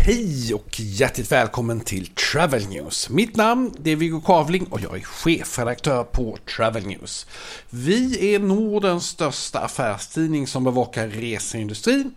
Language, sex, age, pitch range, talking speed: English, male, 50-69, 125-190 Hz, 135 wpm